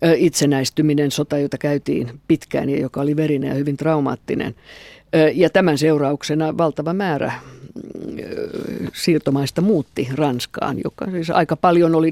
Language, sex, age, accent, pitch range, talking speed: Finnish, female, 50-69, native, 140-160 Hz, 125 wpm